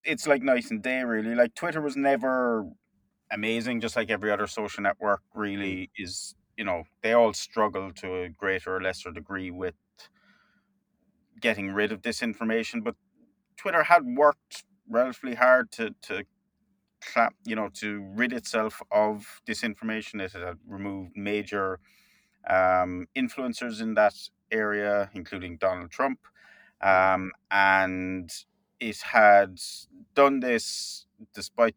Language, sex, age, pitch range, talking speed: English, male, 30-49, 95-125 Hz, 130 wpm